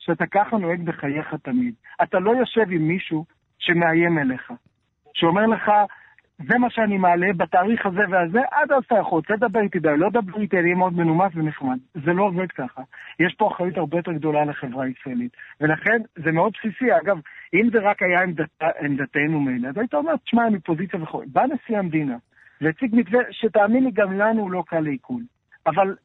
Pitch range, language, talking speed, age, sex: 160-210 Hz, Hebrew, 175 wpm, 60-79, male